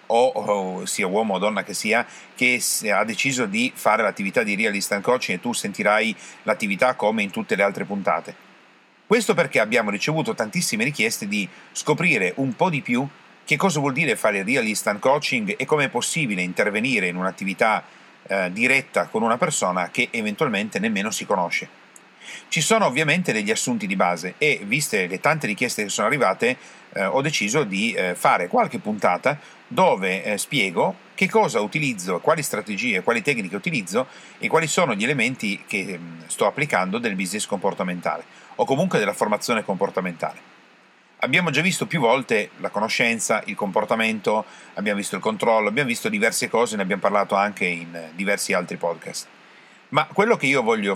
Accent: native